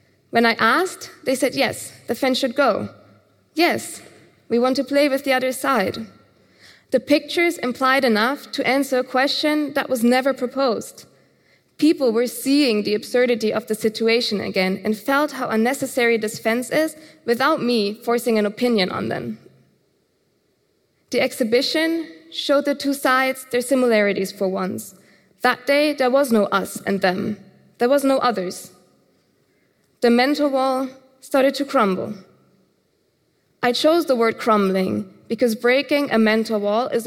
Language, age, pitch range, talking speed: English, 20-39, 215-270 Hz, 150 wpm